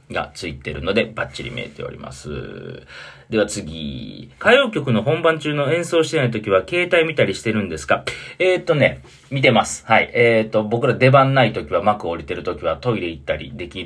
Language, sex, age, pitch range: Japanese, male, 40-59, 110-160 Hz